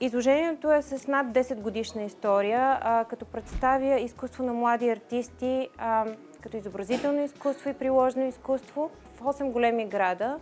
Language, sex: Bulgarian, female